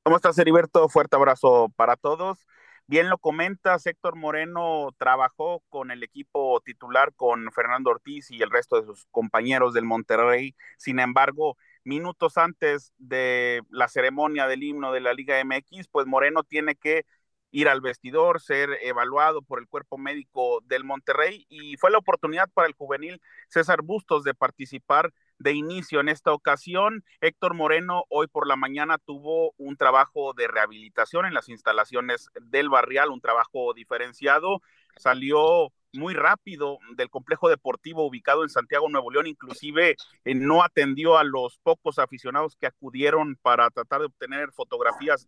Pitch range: 135-190 Hz